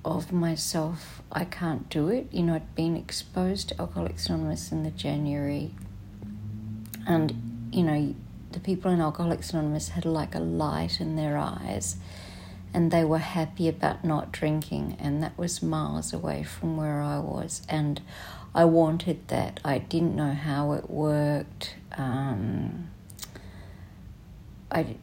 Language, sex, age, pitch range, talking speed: English, female, 50-69, 105-160 Hz, 145 wpm